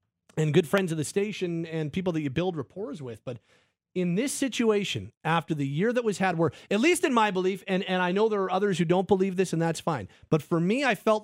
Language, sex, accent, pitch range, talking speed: English, male, American, 150-200 Hz, 255 wpm